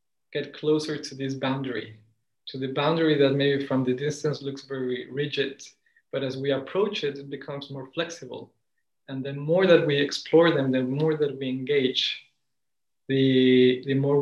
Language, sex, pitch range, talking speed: English, male, 130-150 Hz, 170 wpm